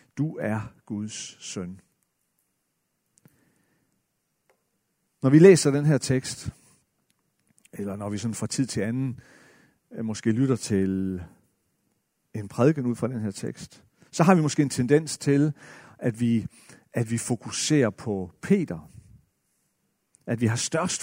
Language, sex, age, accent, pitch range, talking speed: Danish, male, 50-69, native, 115-165 Hz, 125 wpm